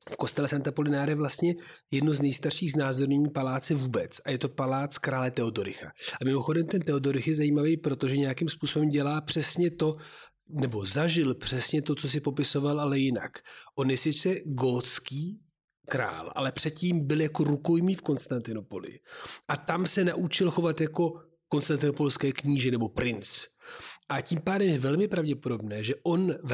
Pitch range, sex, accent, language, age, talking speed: 130-160 Hz, male, native, Czech, 40-59, 160 wpm